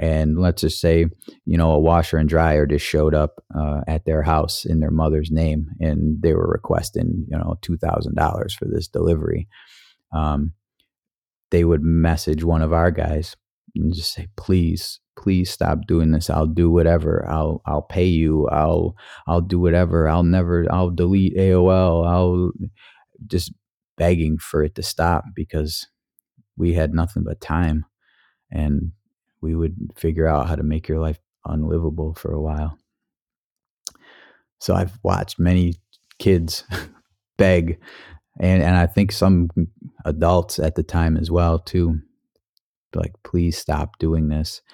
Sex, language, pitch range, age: male, English, 75-90 Hz, 30-49